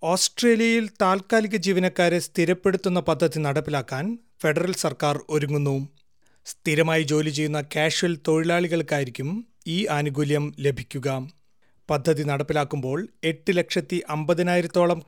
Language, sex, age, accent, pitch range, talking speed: Malayalam, male, 30-49, native, 150-180 Hz, 90 wpm